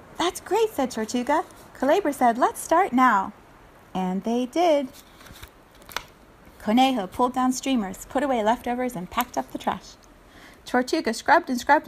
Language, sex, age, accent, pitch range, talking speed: English, female, 30-49, American, 210-305 Hz, 140 wpm